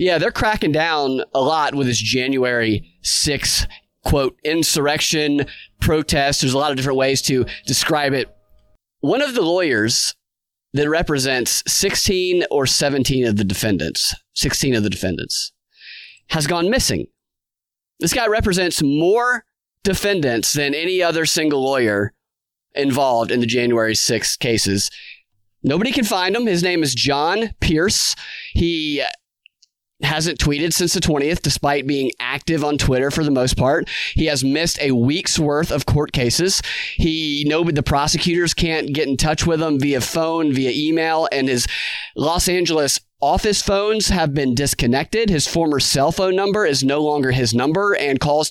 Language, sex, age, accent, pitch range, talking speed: English, male, 30-49, American, 130-165 Hz, 155 wpm